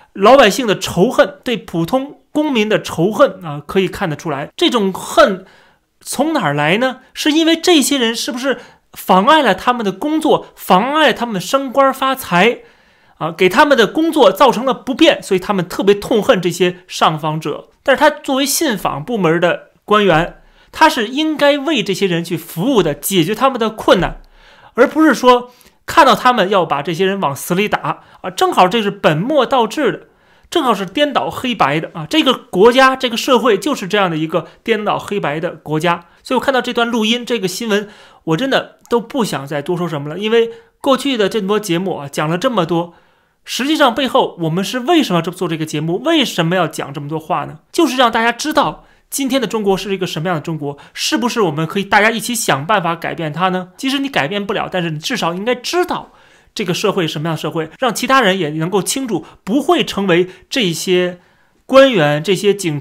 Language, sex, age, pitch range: Chinese, male, 30-49, 175-265 Hz